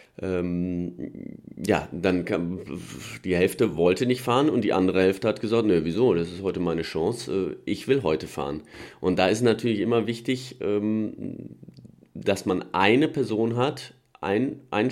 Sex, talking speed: male, 155 wpm